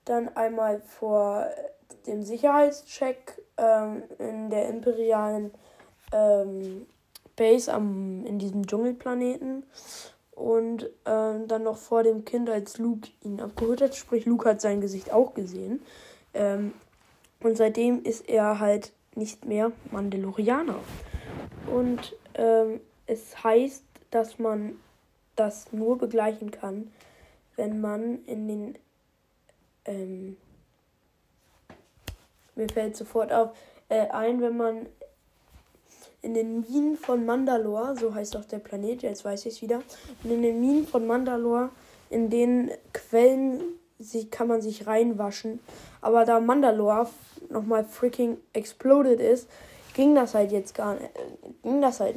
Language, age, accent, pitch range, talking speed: German, 10-29, German, 215-245 Hz, 130 wpm